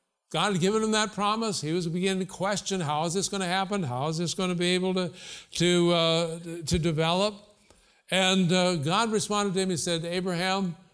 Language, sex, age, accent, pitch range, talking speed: English, male, 60-79, American, 155-185 Hz, 195 wpm